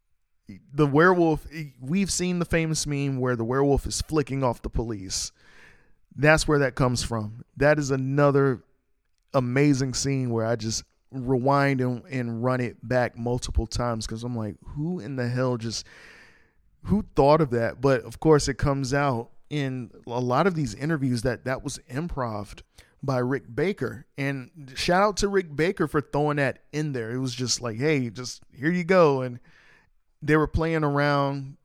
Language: English